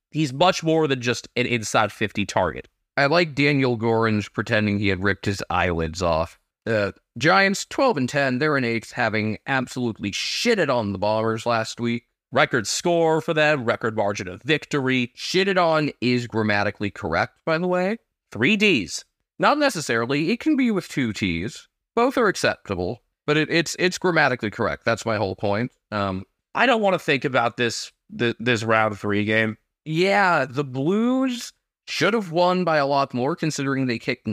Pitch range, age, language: 110-165 Hz, 30-49, English